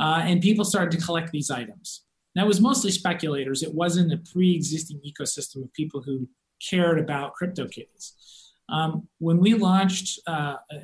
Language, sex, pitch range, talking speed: English, male, 140-175 Hz, 165 wpm